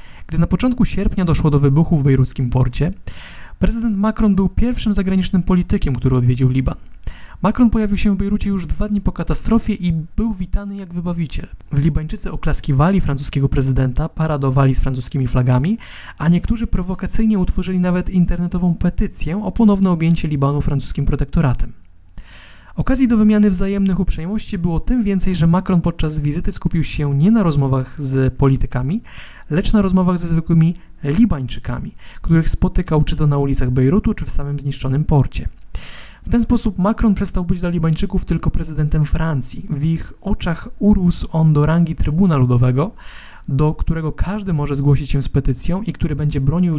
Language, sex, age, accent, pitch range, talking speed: Polish, male, 20-39, native, 140-190 Hz, 160 wpm